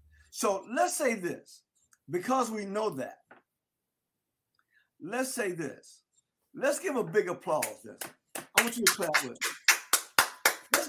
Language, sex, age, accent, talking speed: English, male, 50-69, American, 130 wpm